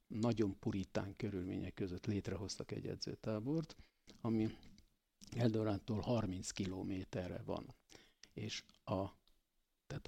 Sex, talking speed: male, 90 wpm